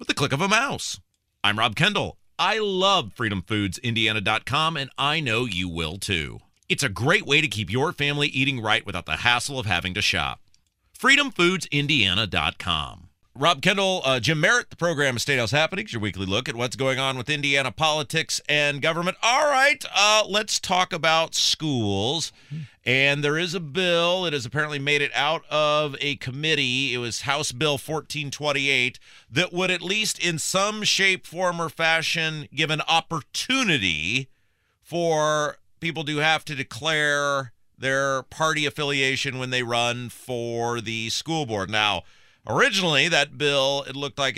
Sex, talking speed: male, 160 wpm